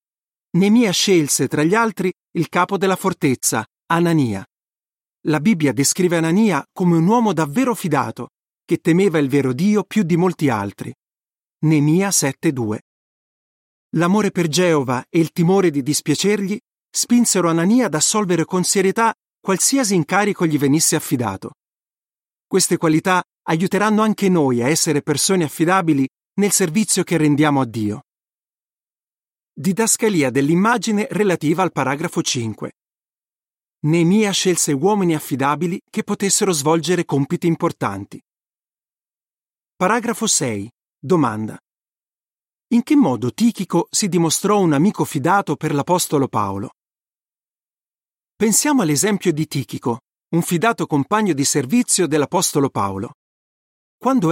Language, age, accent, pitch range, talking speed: Italian, 40-59, native, 145-195 Hz, 115 wpm